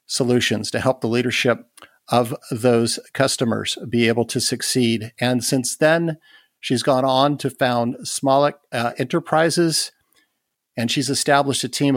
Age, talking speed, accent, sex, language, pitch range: 50-69, 135 wpm, American, male, English, 125-140 Hz